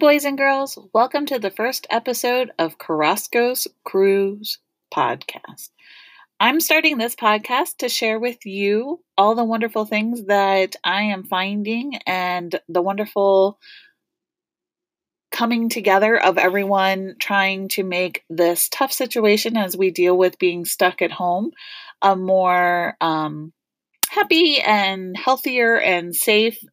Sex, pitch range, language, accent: female, 180-255 Hz, English, American